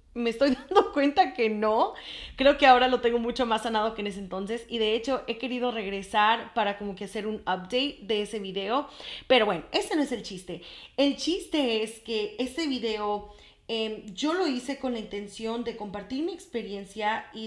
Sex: female